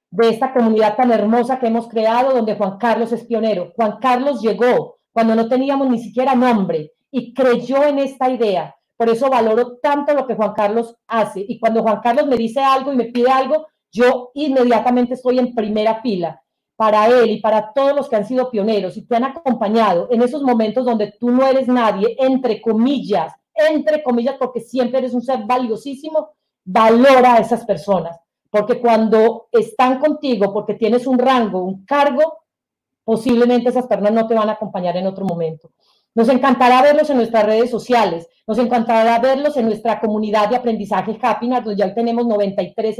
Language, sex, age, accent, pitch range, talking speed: Spanish, female, 40-59, Colombian, 210-250 Hz, 180 wpm